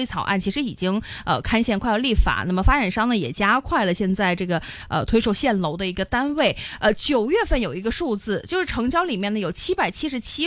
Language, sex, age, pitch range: Chinese, female, 20-39, 185-270 Hz